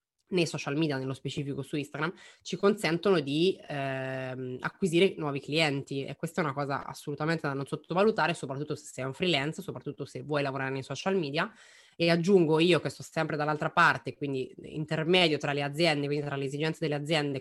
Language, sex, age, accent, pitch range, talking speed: Italian, female, 20-39, native, 140-180 Hz, 185 wpm